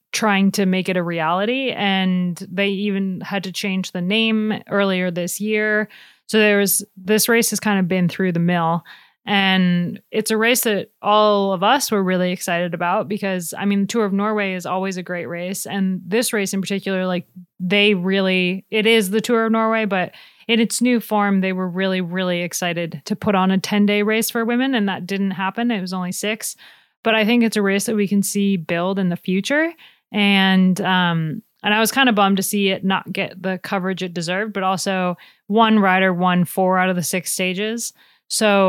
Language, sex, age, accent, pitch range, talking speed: English, female, 20-39, American, 185-220 Hz, 210 wpm